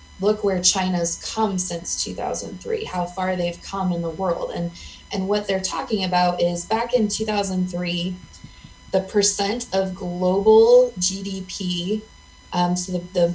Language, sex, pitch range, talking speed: English, female, 175-200 Hz, 145 wpm